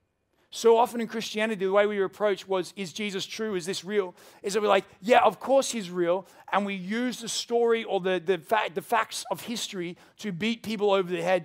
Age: 30-49